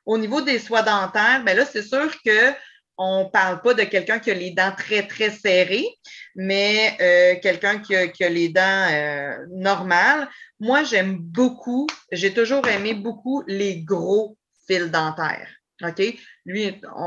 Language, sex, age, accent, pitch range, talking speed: French, female, 30-49, Canadian, 180-230 Hz, 165 wpm